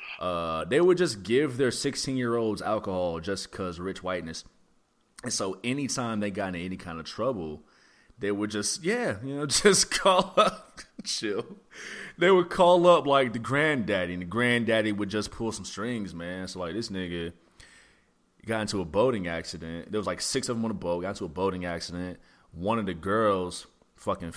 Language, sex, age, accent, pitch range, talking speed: English, male, 30-49, American, 90-110 Hz, 190 wpm